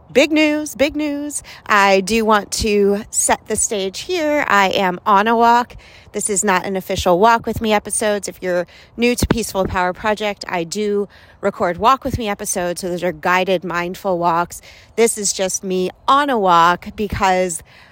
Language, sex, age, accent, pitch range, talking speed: English, female, 40-59, American, 185-240 Hz, 180 wpm